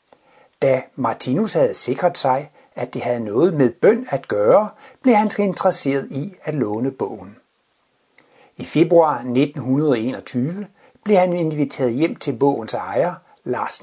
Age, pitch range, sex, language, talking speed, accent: 60-79, 135-195 Hz, male, Danish, 135 wpm, native